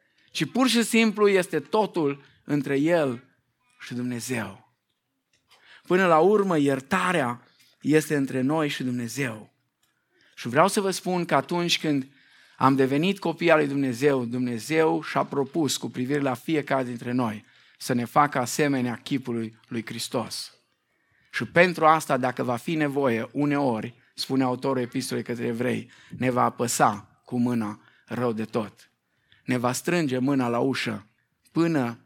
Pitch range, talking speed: 120-150 Hz, 145 wpm